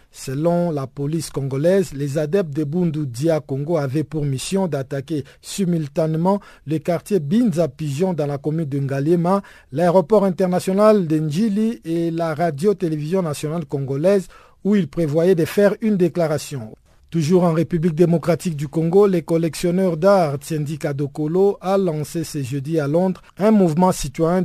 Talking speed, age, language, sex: 145 wpm, 50-69, French, male